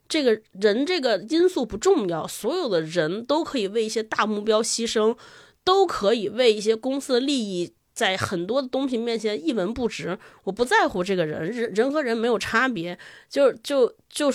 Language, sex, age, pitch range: Chinese, female, 20-39, 215-290 Hz